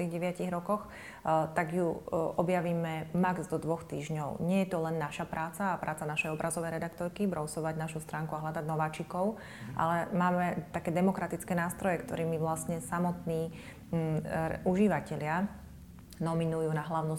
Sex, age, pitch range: female, 30-49, 160-180 Hz